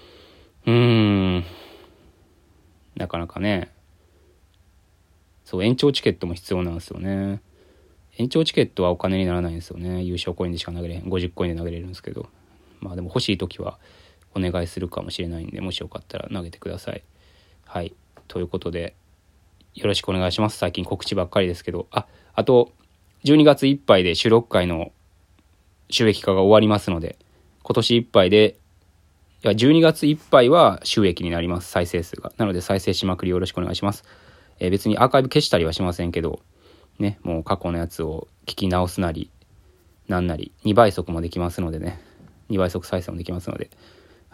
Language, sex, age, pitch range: Japanese, male, 20-39, 85-100 Hz